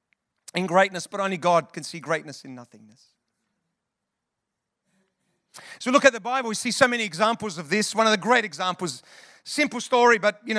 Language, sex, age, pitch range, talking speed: English, male, 40-59, 180-240 Hz, 180 wpm